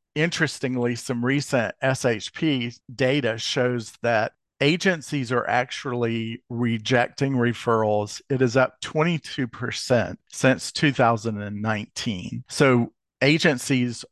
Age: 50-69